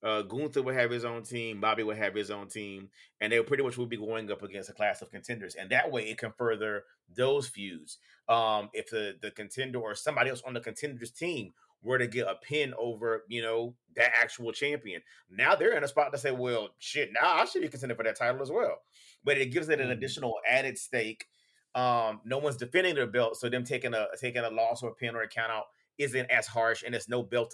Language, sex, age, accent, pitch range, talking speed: English, male, 30-49, American, 110-130 Hz, 245 wpm